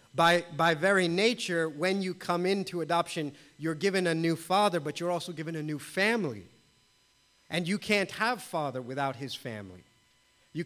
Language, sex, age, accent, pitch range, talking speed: English, male, 40-59, American, 140-185 Hz, 170 wpm